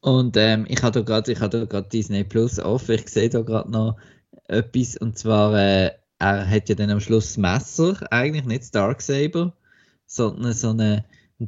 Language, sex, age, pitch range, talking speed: German, male, 20-39, 100-120 Hz, 180 wpm